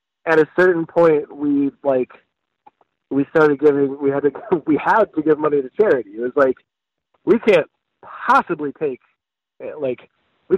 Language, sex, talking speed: English, male, 160 wpm